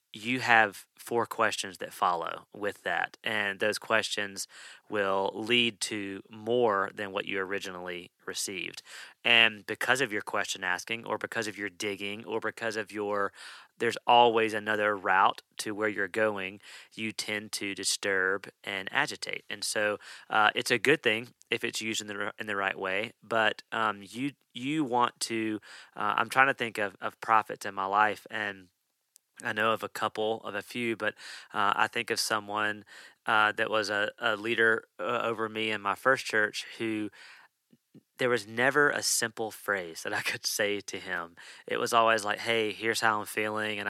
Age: 30-49